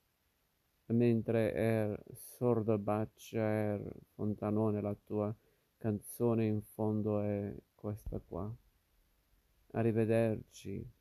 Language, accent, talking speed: Italian, native, 80 wpm